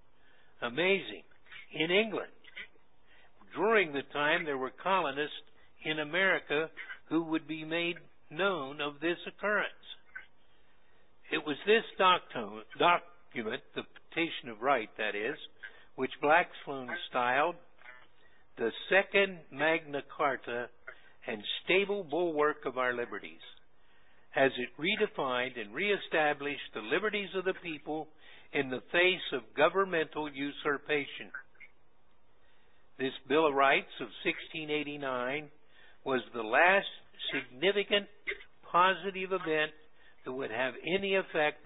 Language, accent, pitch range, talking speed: English, American, 140-190 Hz, 110 wpm